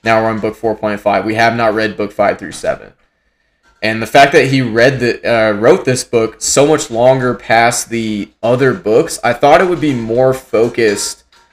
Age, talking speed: 20-39, 210 wpm